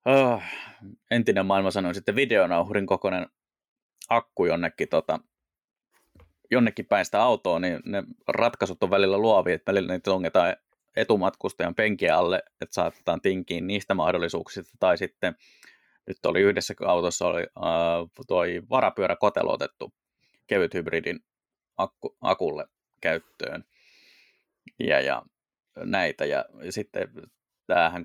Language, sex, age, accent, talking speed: Finnish, male, 20-39, native, 115 wpm